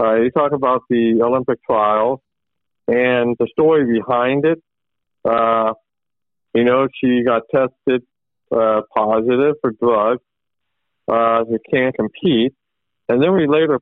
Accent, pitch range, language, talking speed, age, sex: American, 110-140 Hz, English, 130 wpm, 50-69, male